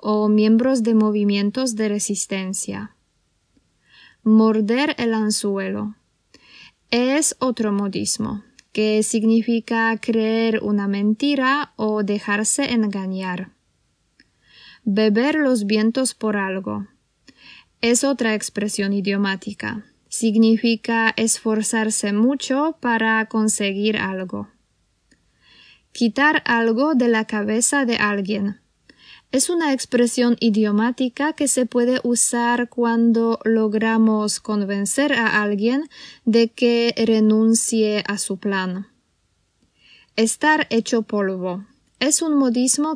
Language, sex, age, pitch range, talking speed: Polish, female, 20-39, 205-240 Hz, 95 wpm